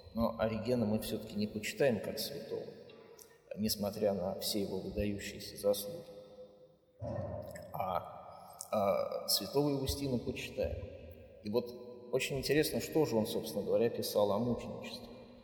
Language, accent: Russian, native